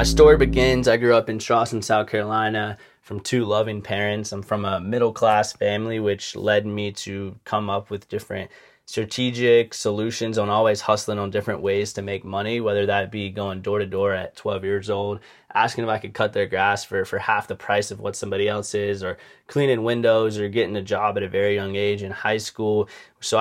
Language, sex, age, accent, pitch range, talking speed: English, male, 20-39, American, 100-110 Hz, 210 wpm